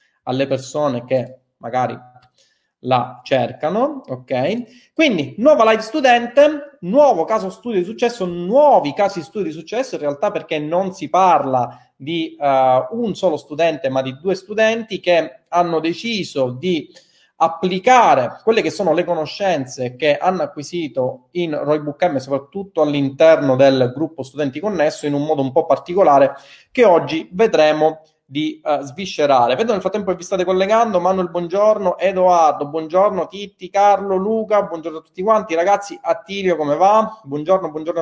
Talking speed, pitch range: 150 wpm, 155-210 Hz